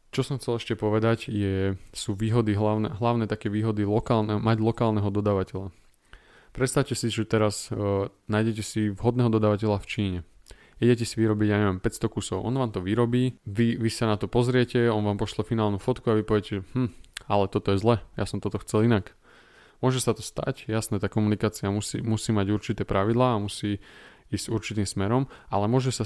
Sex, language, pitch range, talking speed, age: male, Slovak, 100-115 Hz, 185 wpm, 20-39